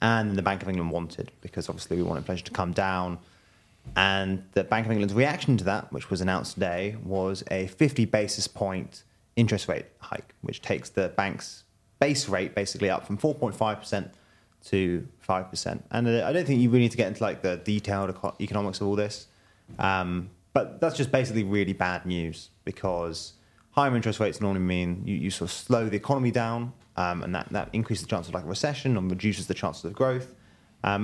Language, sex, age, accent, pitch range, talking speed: English, male, 30-49, British, 90-110 Hz, 200 wpm